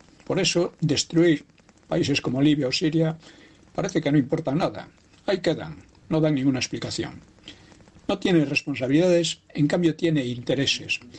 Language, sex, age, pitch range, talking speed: Spanish, male, 60-79, 125-155 Hz, 140 wpm